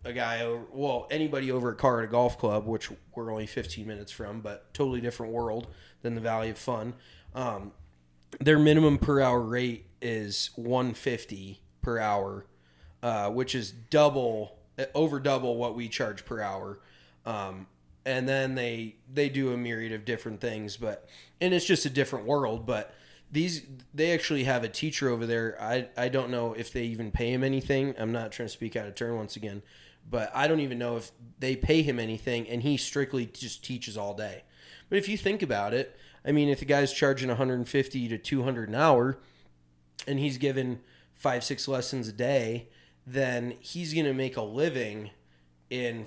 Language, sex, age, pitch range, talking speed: English, male, 20-39, 110-135 Hz, 190 wpm